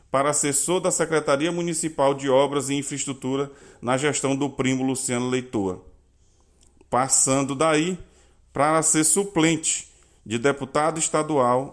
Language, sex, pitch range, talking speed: Portuguese, male, 125-155 Hz, 120 wpm